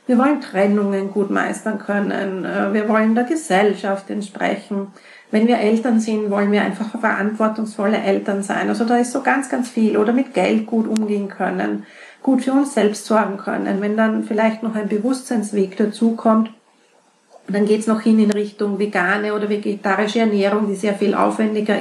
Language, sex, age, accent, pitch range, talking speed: German, female, 40-59, Austrian, 205-240 Hz, 175 wpm